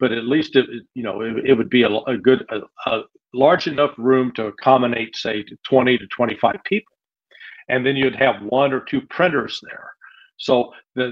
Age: 50-69